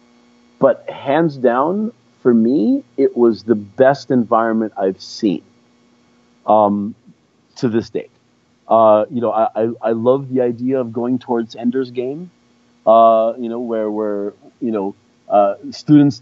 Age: 40-59